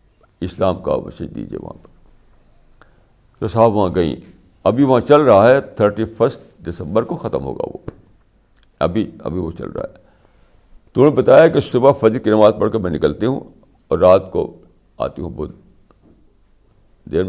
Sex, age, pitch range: male, 60-79, 90-115 Hz